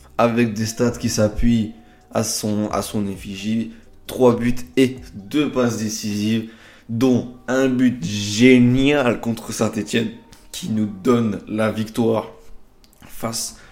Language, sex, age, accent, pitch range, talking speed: French, male, 20-39, French, 105-120 Hz, 125 wpm